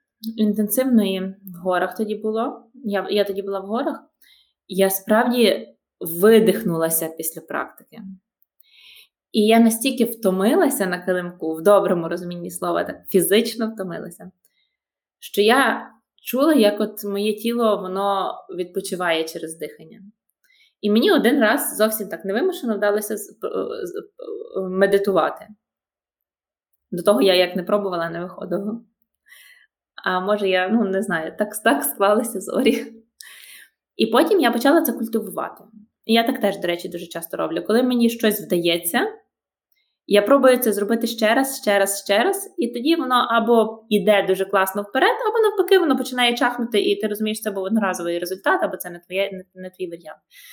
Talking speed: 145 wpm